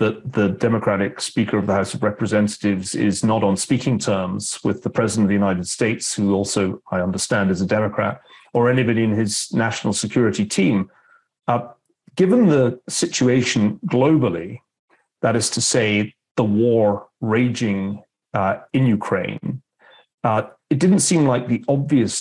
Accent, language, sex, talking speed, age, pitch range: British, English, male, 155 wpm, 40-59, 100-125 Hz